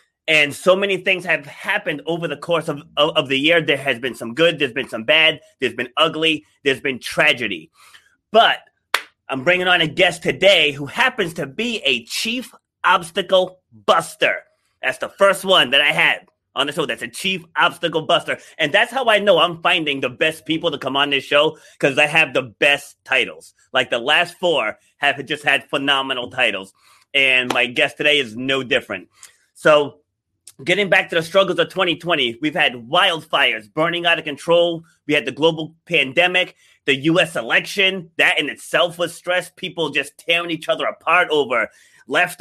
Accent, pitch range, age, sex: American, 145-190 Hz, 30-49, male